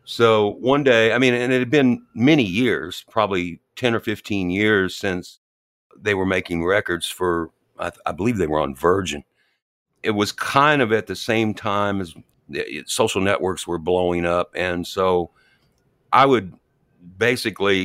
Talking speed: 160 wpm